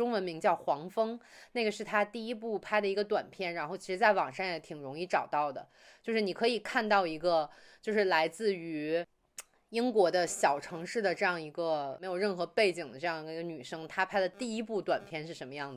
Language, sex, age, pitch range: Chinese, female, 20-39, 160-205 Hz